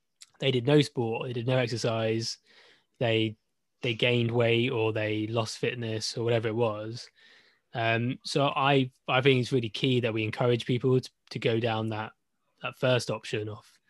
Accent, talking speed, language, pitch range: British, 175 wpm, English, 115-140 Hz